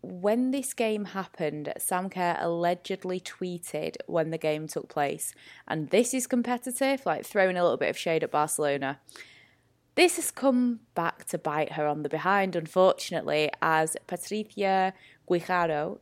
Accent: British